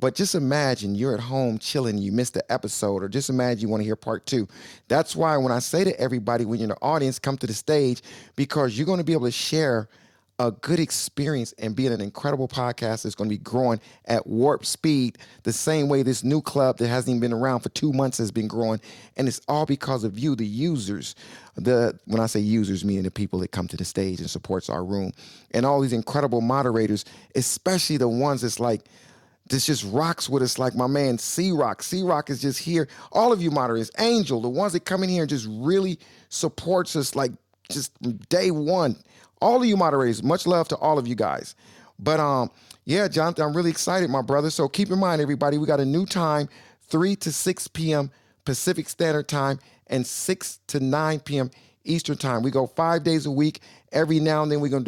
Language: English